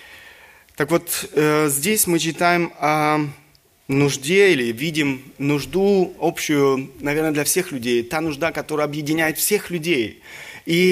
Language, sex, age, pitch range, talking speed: Russian, male, 30-49, 150-185 Hz, 120 wpm